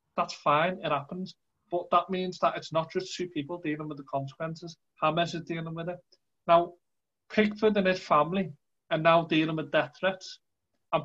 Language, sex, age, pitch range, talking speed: English, male, 30-49, 150-185 Hz, 185 wpm